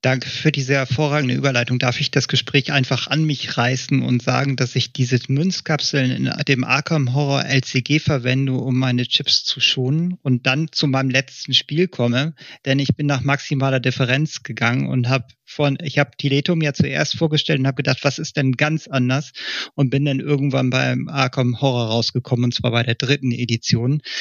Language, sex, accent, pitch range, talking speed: German, male, German, 125-140 Hz, 185 wpm